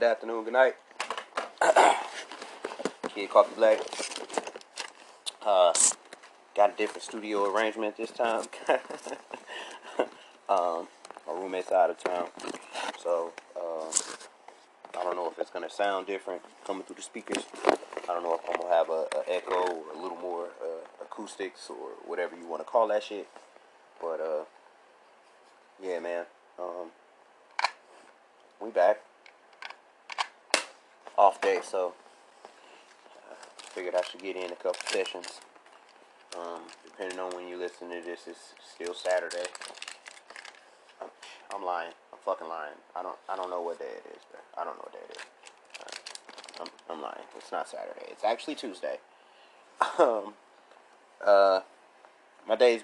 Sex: male